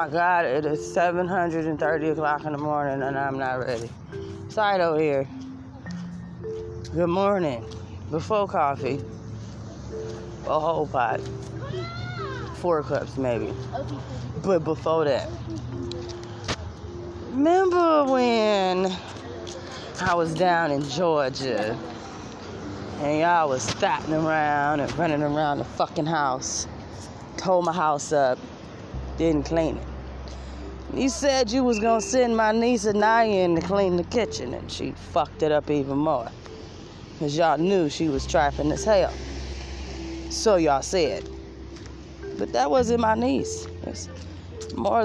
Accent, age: American, 20-39